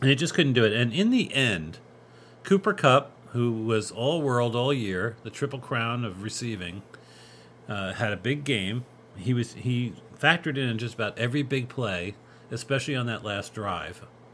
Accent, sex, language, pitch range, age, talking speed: American, male, English, 95-125 Hz, 40-59, 175 wpm